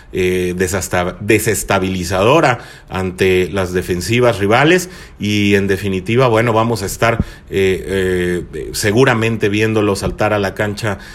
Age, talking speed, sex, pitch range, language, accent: 30-49, 120 wpm, male, 95-125 Hz, Spanish, Mexican